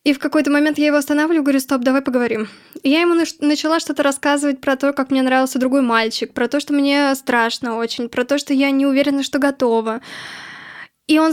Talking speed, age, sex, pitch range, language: 215 wpm, 10-29, female, 255-305 Hz, Russian